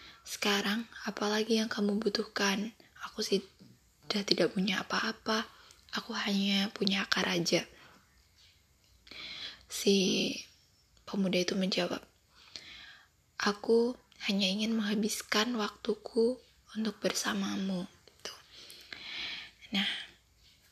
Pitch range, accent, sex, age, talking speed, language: 195-225 Hz, native, female, 20-39, 80 wpm, Indonesian